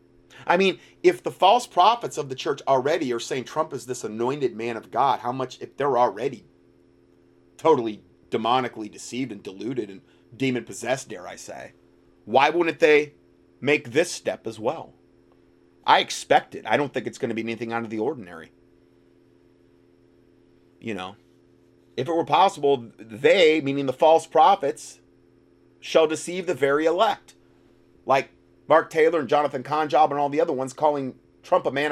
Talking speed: 165 wpm